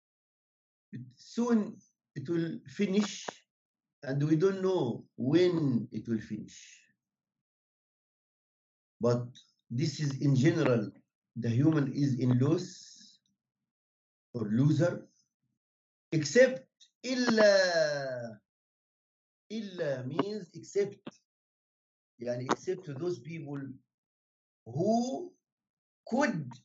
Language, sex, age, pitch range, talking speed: English, male, 50-69, 130-190 Hz, 75 wpm